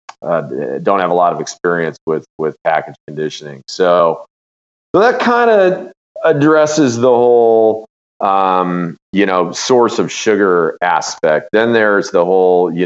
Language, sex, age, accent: English, male, 40-59, American